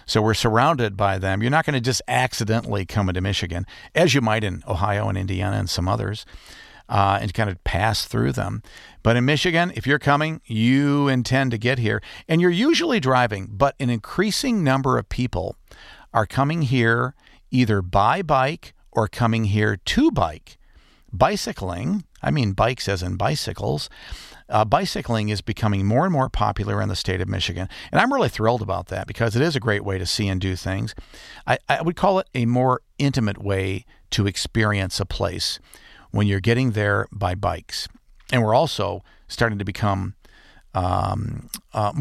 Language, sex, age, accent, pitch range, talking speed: English, male, 50-69, American, 95-130 Hz, 180 wpm